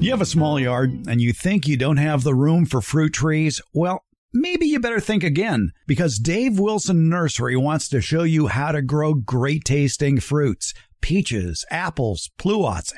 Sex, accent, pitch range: male, American, 130-185 Hz